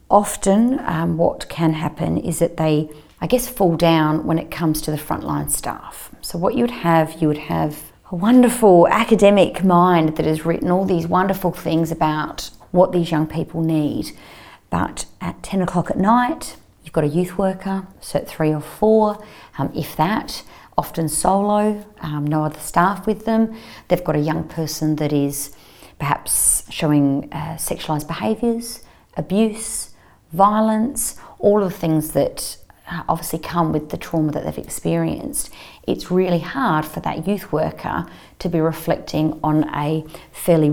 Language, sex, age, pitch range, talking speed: English, female, 40-59, 155-195 Hz, 160 wpm